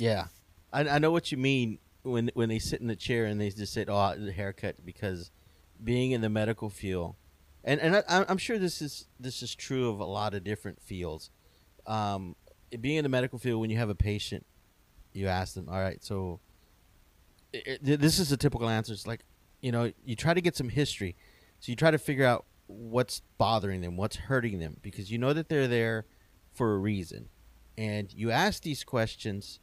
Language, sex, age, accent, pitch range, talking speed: English, male, 30-49, American, 95-130 Hz, 205 wpm